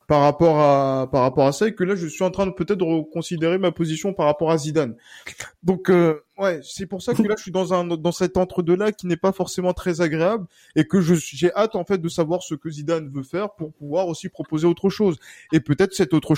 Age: 20-39